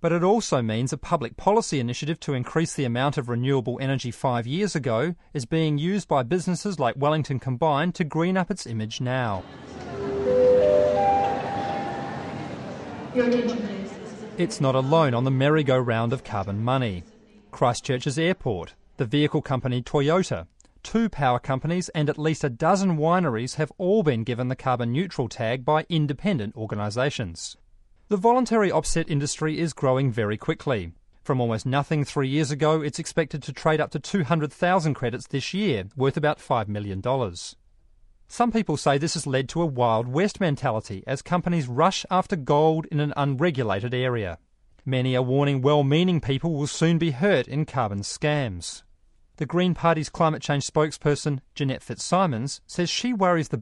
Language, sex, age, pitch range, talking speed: English, male, 30-49, 125-165 Hz, 155 wpm